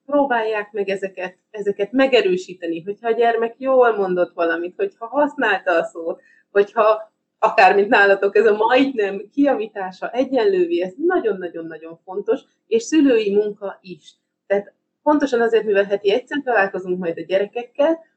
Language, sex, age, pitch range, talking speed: German, female, 30-49, 175-260 Hz, 130 wpm